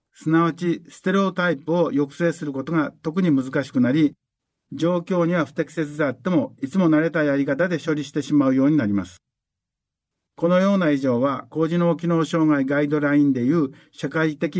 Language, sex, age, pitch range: Japanese, male, 50-69, 140-170 Hz